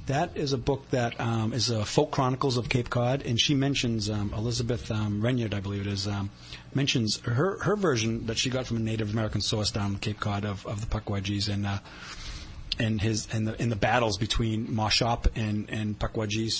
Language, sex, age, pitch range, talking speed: English, male, 30-49, 105-125 Hz, 215 wpm